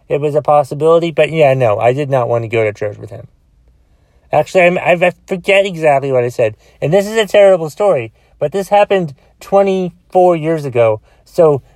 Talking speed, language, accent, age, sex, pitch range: 195 wpm, English, American, 30-49, male, 105-175 Hz